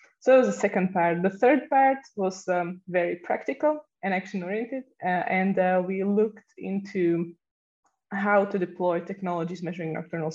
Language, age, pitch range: English, 20-39, 170-200 Hz